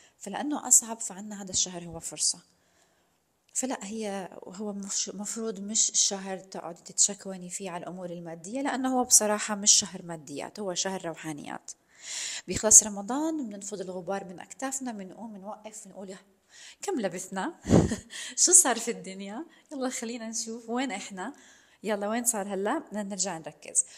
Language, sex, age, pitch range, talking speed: Arabic, female, 20-39, 180-225 Hz, 145 wpm